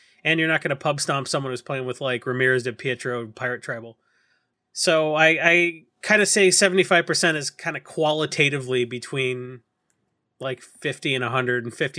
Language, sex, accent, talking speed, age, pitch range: English, male, American, 165 wpm, 30-49, 125-165 Hz